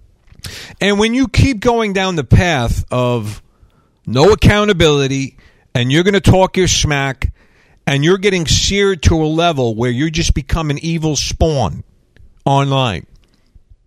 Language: English